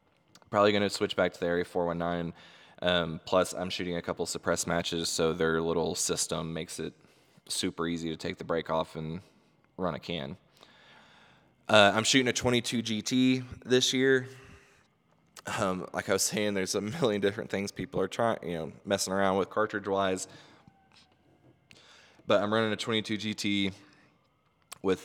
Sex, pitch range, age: male, 85-105 Hz, 20-39